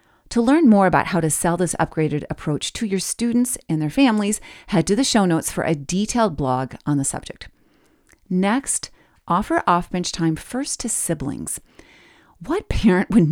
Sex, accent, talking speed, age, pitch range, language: female, American, 170 wpm, 40-59, 150-225 Hz, English